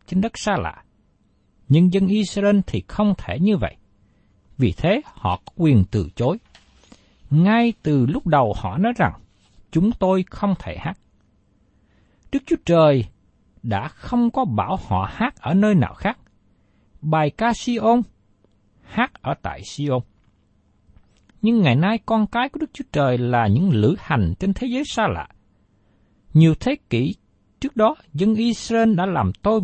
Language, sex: Vietnamese, male